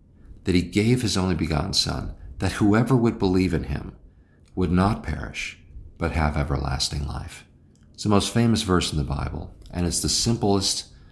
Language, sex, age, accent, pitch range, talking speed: English, male, 50-69, American, 75-95 Hz, 175 wpm